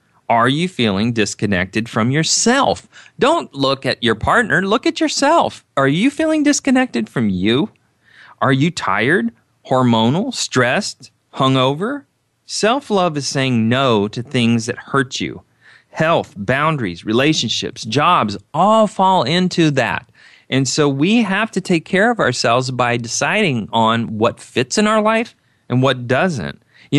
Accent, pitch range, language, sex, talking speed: American, 120-185 Hz, English, male, 140 wpm